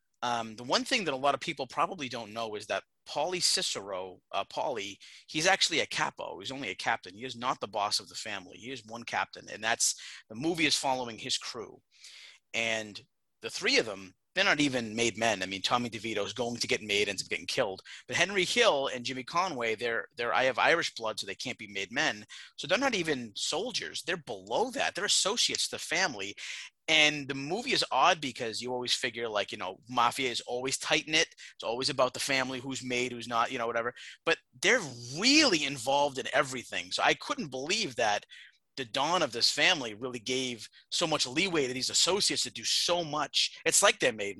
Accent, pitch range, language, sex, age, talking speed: American, 115-145 Hz, English, male, 30-49, 215 wpm